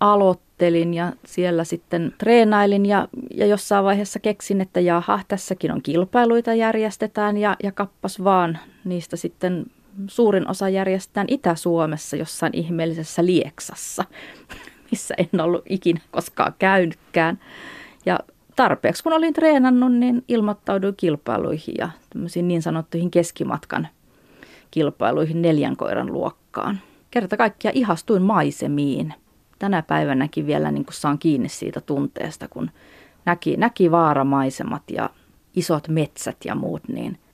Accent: native